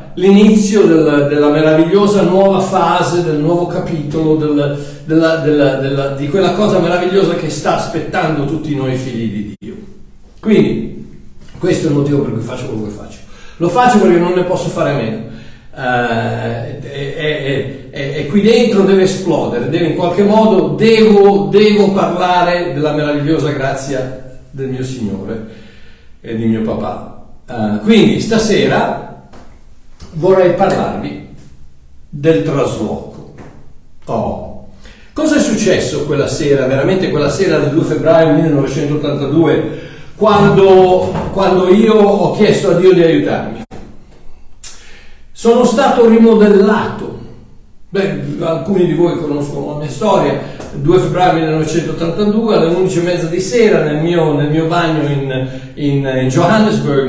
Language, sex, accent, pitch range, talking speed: Italian, male, native, 135-190 Hz, 130 wpm